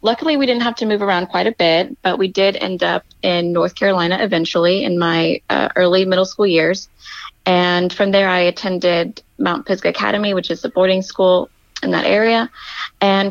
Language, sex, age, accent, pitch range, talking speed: English, female, 20-39, American, 175-210 Hz, 195 wpm